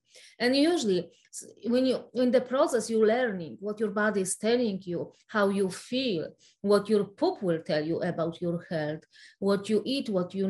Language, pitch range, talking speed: English, 185-230 Hz, 185 wpm